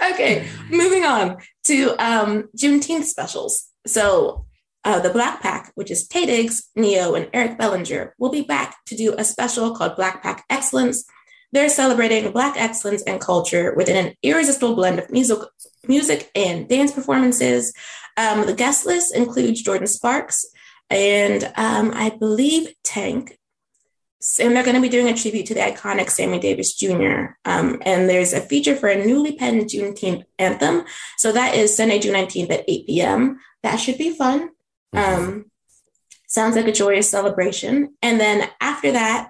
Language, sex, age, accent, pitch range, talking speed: English, female, 20-39, American, 195-255 Hz, 165 wpm